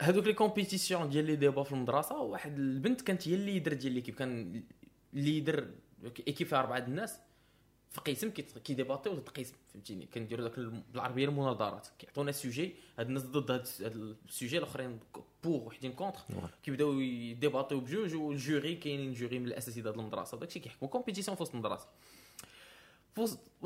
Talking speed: 155 wpm